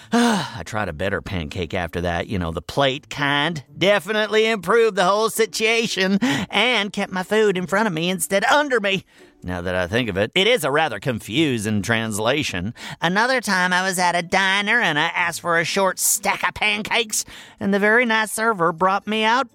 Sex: male